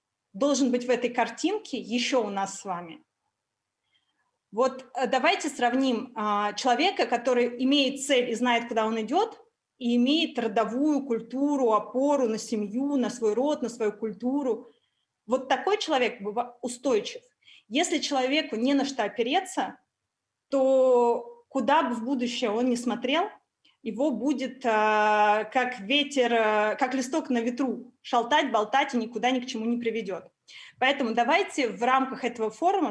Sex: female